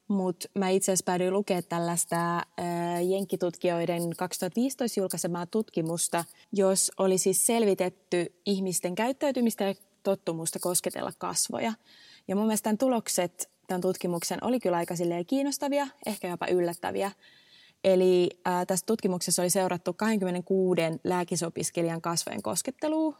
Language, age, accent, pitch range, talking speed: Finnish, 20-39, native, 175-205 Hz, 115 wpm